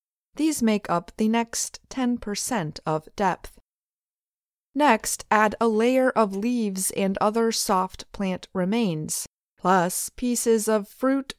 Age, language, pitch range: 20-39, English, 180-240 Hz